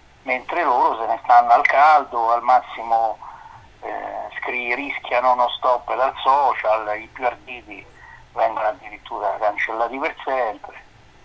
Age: 50-69